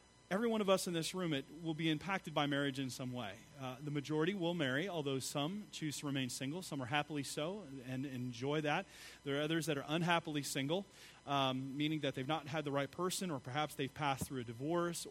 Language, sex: English, male